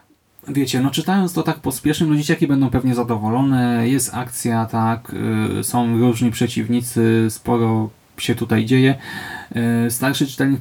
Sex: male